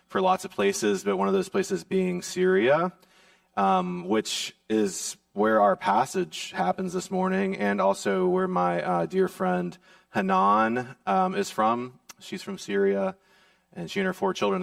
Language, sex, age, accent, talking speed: English, male, 30-49, American, 165 wpm